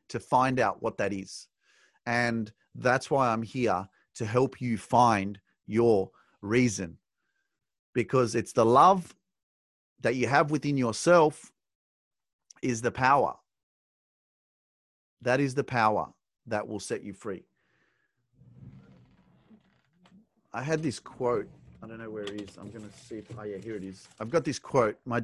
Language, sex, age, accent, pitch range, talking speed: English, male, 40-59, Australian, 100-130 Hz, 150 wpm